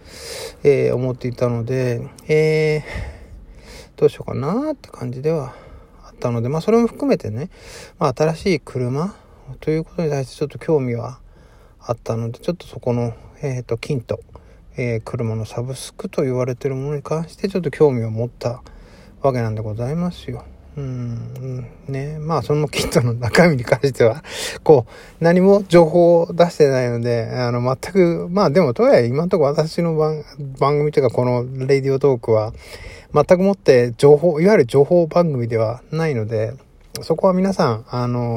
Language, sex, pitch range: Japanese, male, 120-165 Hz